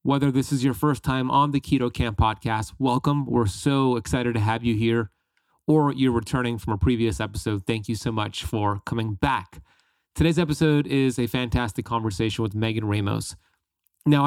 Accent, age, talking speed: American, 30-49, 180 wpm